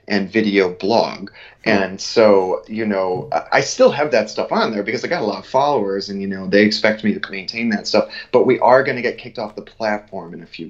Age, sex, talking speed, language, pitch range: 30-49, male, 245 wpm, English, 105-135 Hz